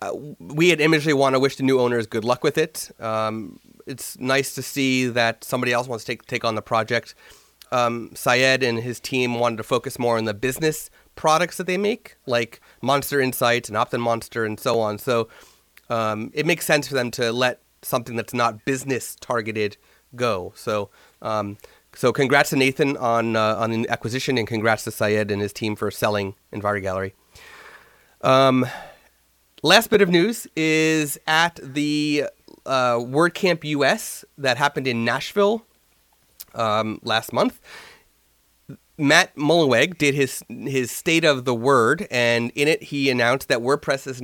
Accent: American